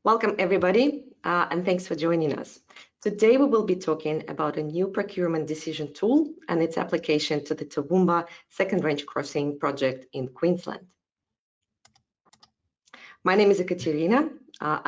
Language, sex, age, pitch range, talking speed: English, female, 20-39, 150-205 Hz, 145 wpm